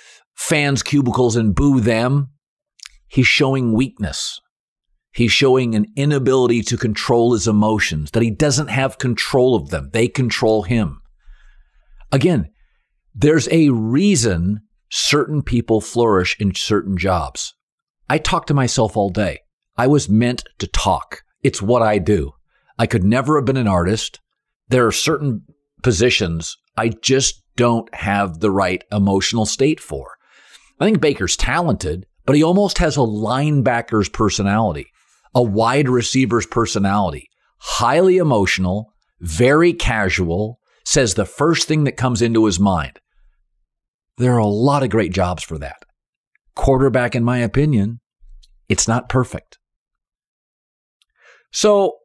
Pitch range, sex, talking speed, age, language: 100-135 Hz, male, 135 wpm, 50-69, English